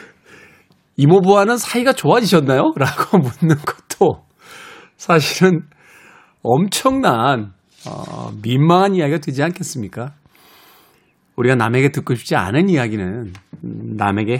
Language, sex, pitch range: Korean, male, 115-170 Hz